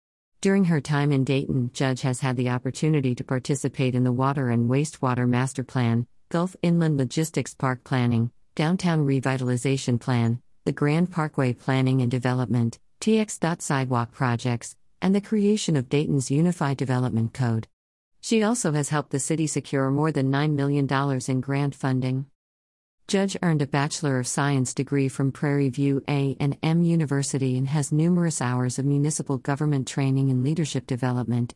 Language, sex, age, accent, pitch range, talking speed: English, female, 50-69, American, 130-160 Hz, 150 wpm